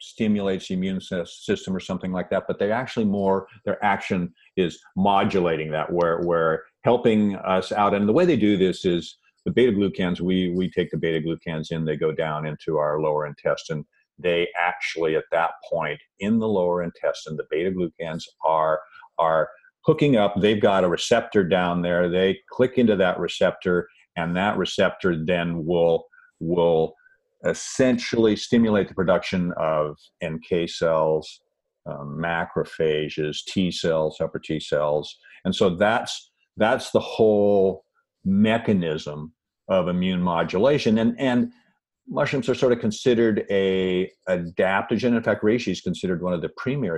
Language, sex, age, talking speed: English, male, 50-69, 155 wpm